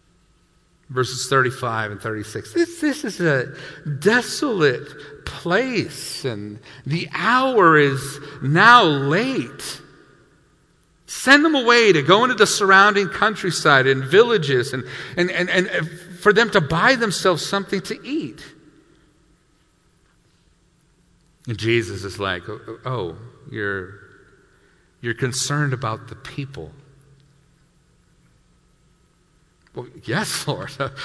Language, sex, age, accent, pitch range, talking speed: English, male, 50-69, American, 115-190 Hz, 100 wpm